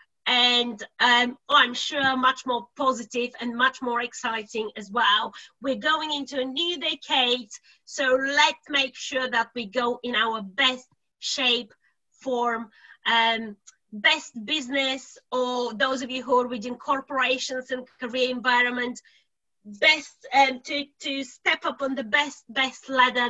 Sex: female